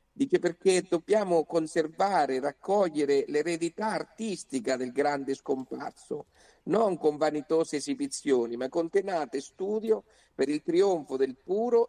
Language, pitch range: Italian, 130-185 Hz